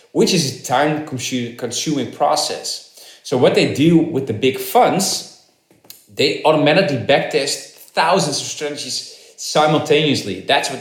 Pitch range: 125-160 Hz